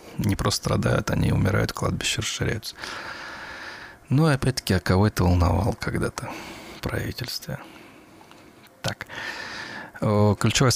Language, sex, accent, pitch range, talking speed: Russian, male, native, 90-115 Hz, 100 wpm